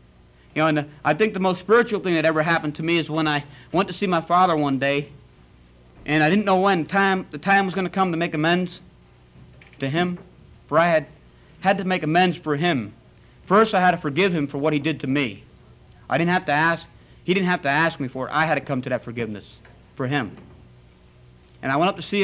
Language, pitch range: English, 120-160 Hz